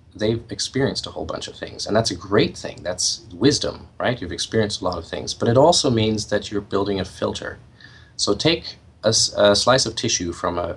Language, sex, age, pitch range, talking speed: English, male, 30-49, 90-105 Hz, 215 wpm